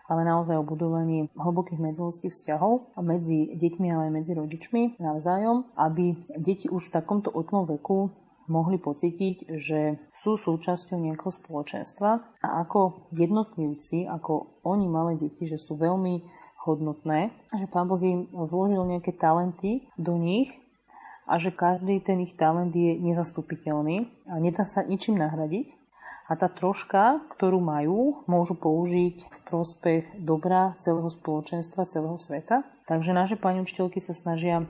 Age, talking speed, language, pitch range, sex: 30-49, 140 wpm, Slovak, 160-185 Hz, female